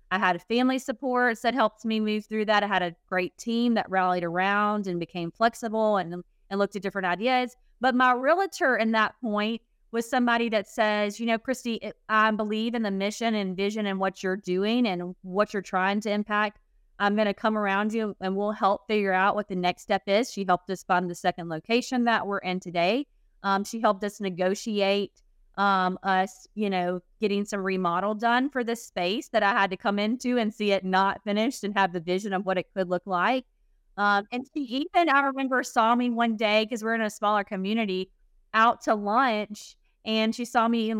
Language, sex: English, female